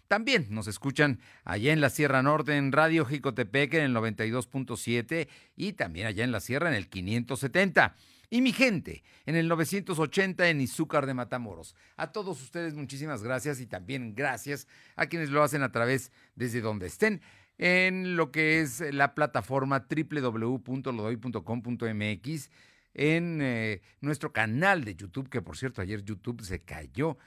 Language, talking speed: Spanish, 155 wpm